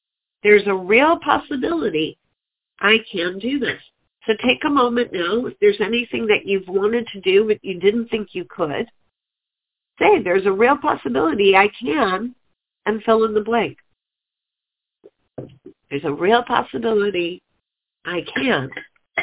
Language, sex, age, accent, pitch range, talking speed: English, female, 50-69, American, 170-235 Hz, 140 wpm